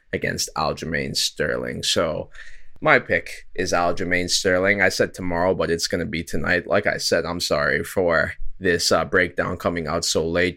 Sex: male